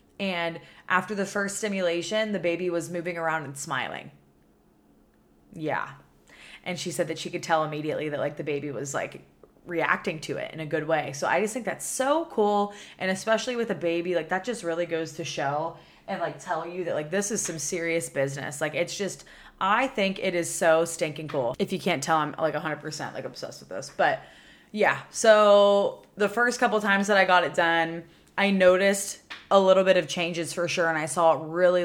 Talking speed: 215 wpm